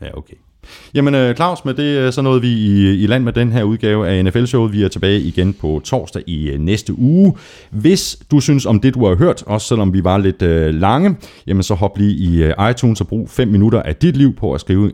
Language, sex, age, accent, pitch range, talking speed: Danish, male, 30-49, native, 85-125 Hz, 230 wpm